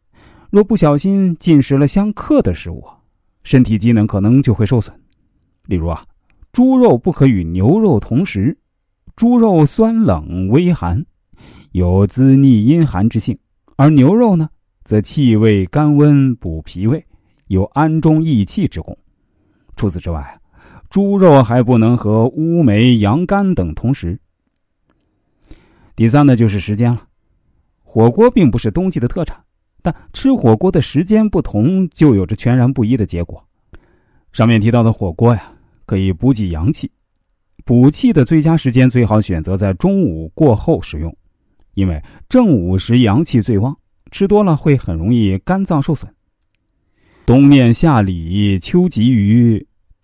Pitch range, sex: 95-155 Hz, male